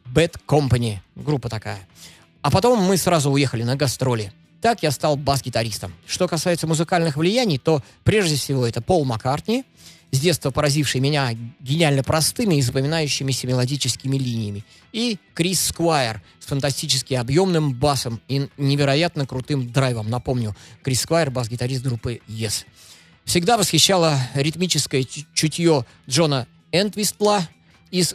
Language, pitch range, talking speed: Russian, 125-170 Hz, 125 wpm